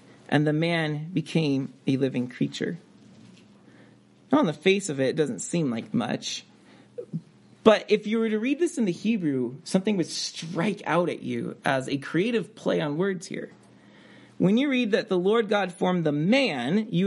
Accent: American